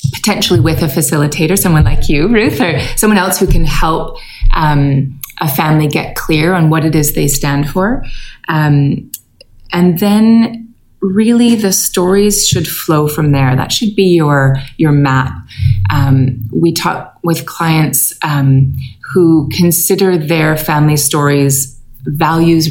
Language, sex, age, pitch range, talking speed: English, female, 30-49, 140-175 Hz, 145 wpm